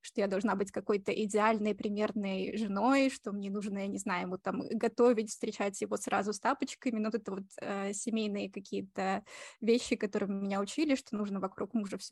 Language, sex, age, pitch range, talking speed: Russian, female, 20-39, 205-235 Hz, 185 wpm